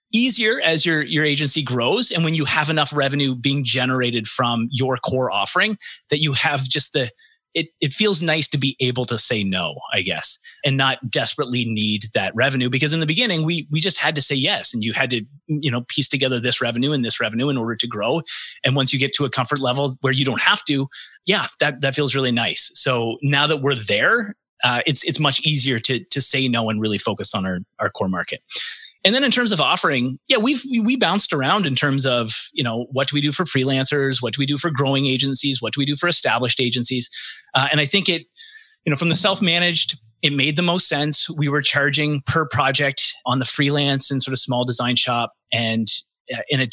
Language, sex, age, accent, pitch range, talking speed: English, male, 30-49, American, 125-160 Hz, 230 wpm